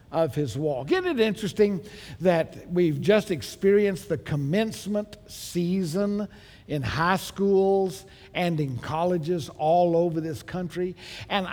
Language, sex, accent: English, male, American